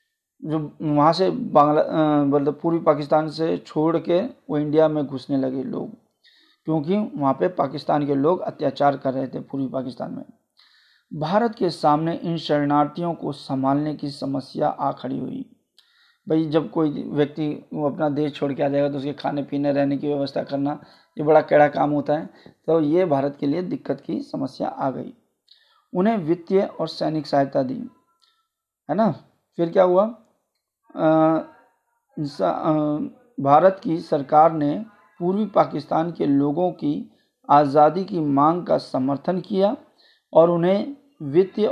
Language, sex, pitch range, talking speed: Hindi, male, 145-205 Hz, 150 wpm